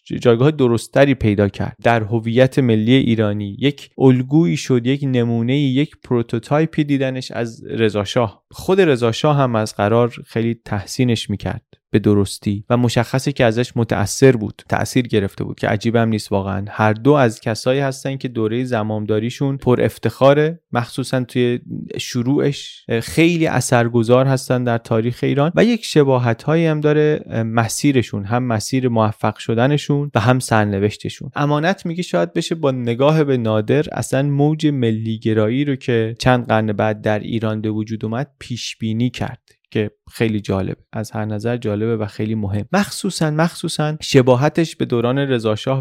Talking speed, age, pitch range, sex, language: 150 wpm, 30-49, 110-140 Hz, male, Persian